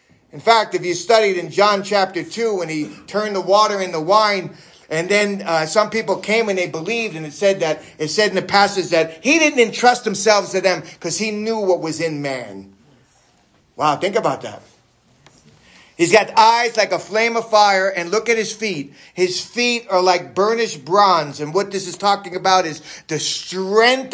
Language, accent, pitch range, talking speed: English, American, 185-255 Hz, 200 wpm